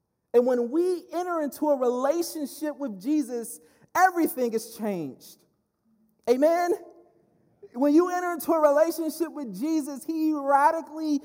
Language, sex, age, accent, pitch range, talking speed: English, male, 30-49, American, 220-300 Hz, 125 wpm